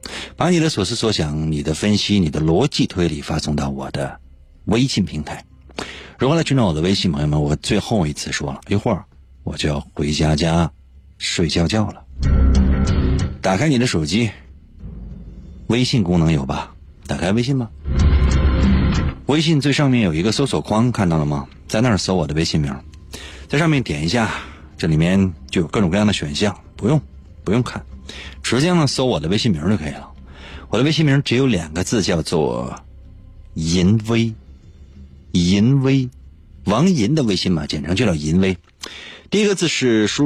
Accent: native